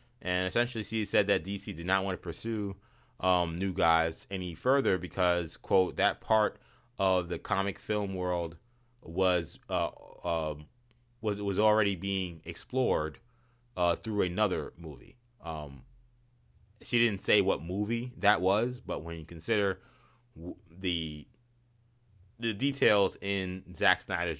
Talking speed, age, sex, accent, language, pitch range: 140 wpm, 20-39, male, American, English, 85-115 Hz